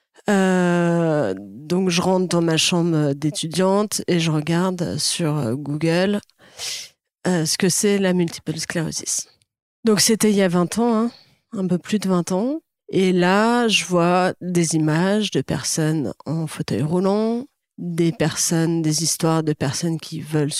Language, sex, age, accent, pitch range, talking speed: French, female, 30-49, French, 155-190 Hz, 150 wpm